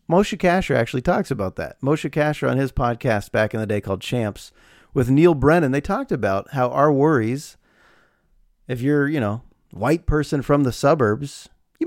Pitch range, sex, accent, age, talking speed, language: 105-150 Hz, male, American, 40-59, 180 wpm, English